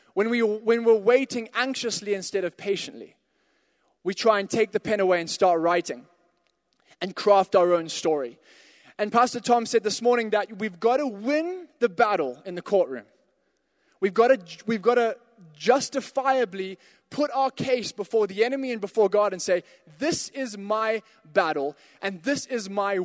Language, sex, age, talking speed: English, male, 20-39, 170 wpm